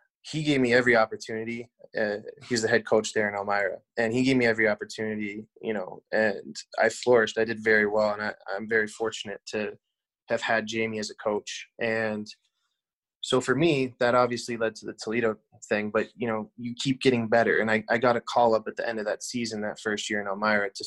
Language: English